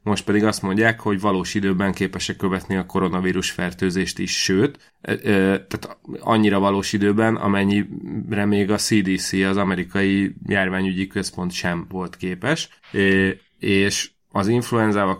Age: 30-49